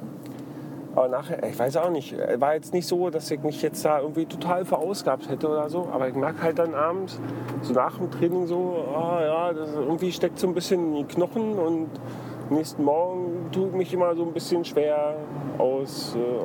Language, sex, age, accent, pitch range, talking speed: German, male, 40-59, German, 140-175 Hz, 195 wpm